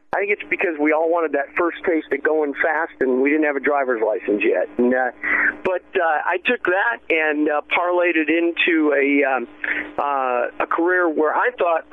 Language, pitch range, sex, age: English, 145-175 Hz, male, 50-69